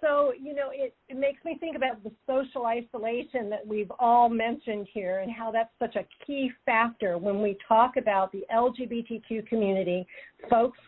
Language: English